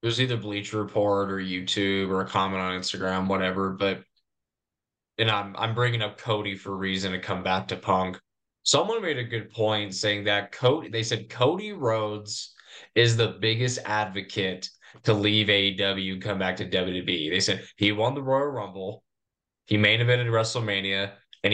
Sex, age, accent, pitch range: male, 20-39, American, 95-110 Hz